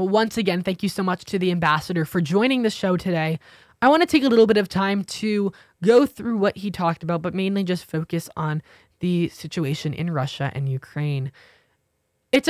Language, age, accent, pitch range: English, 20-39, American, 170-235 Hz